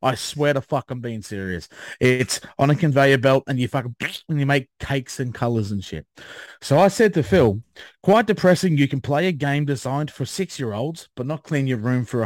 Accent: Australian